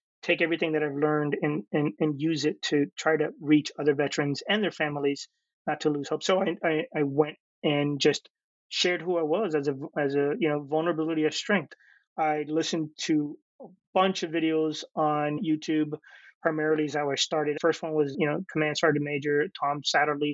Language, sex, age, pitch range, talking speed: English, male, 30-49, 145-165 Hz, 200 wpm